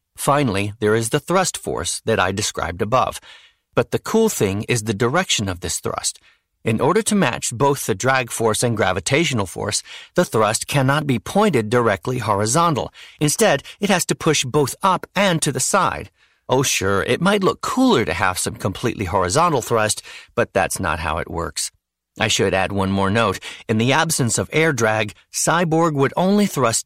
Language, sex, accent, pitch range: English, male, American, 100-150 Hz